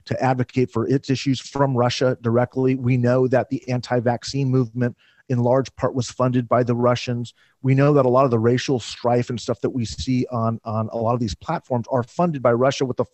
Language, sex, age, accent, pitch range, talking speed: English, male, 40-59, American, 120-145 Hz, 220 wpm